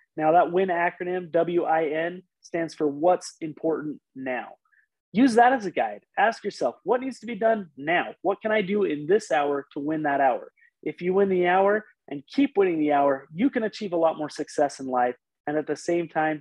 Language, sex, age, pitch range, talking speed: English, male, 30-49, 155-195 Hz, 210 wpm